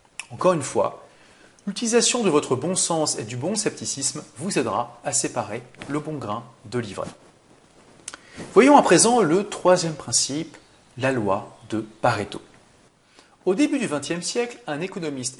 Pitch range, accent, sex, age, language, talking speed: 120-185 Hz, French, male, 40-59, French, 150 wpm